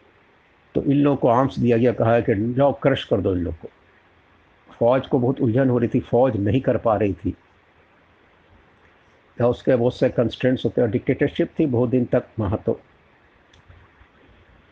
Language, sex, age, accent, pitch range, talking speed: Hindi, male, 70-89, native, 100-130 Hz, 145 wpm